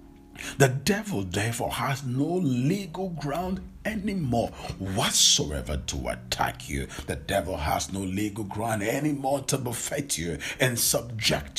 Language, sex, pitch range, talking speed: English, male, 100-140 Hz, 125 wpm